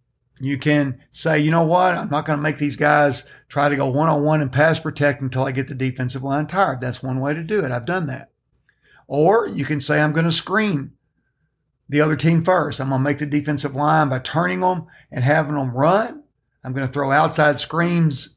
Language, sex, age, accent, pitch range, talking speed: English, male, 50-69, American, 135-160 Hz, 220 wpm